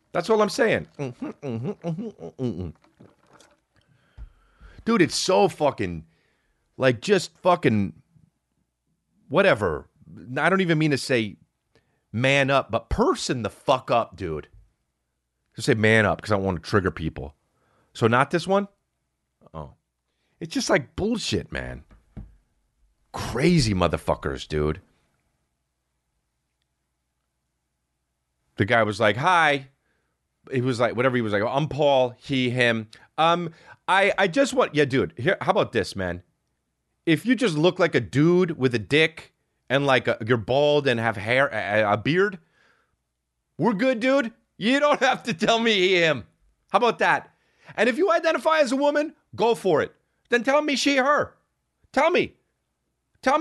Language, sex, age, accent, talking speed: English, male, 30-49, American, 155 wpm